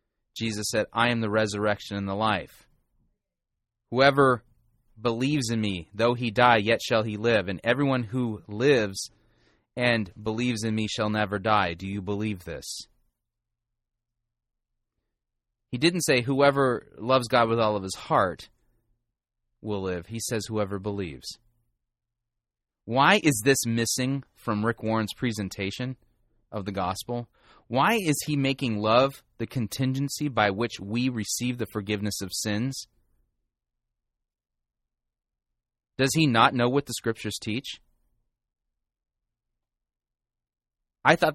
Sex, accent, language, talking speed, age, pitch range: male, American, English, 130 wpm, 30-49, 105-125 Hz